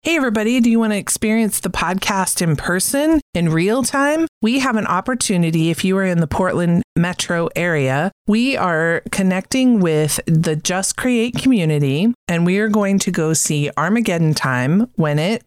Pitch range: 165-215 Hz